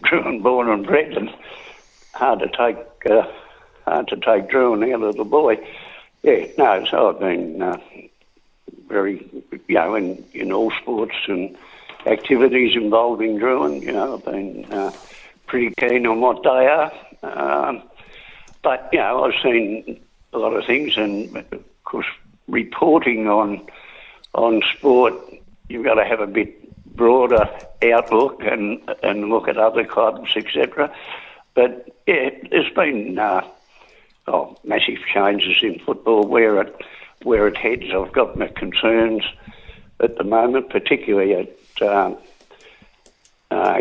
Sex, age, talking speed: male, 60-79, 135 wpm